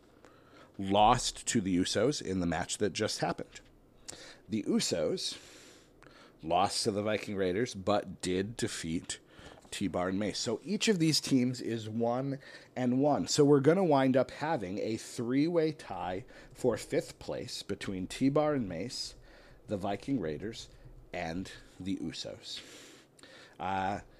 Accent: American